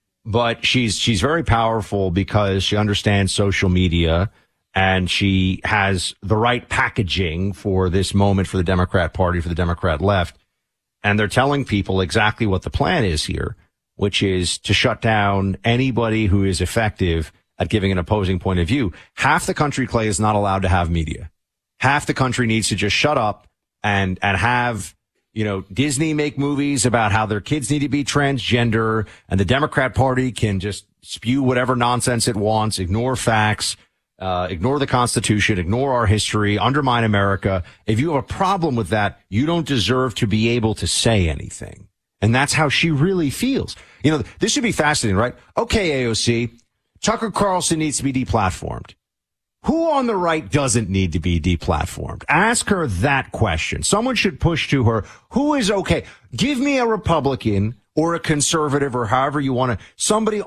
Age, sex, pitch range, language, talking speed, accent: 40-59, male, 95-140 Hz, English, 180 wpm, American